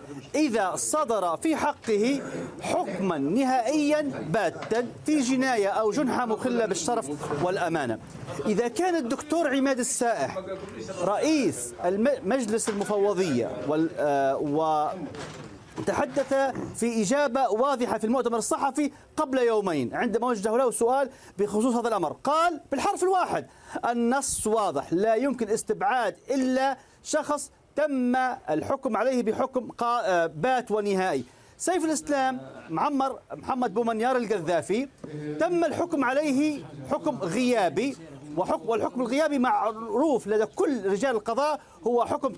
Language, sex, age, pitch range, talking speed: Arabic, male, 40-59, 215-285 Hz, 105 wpm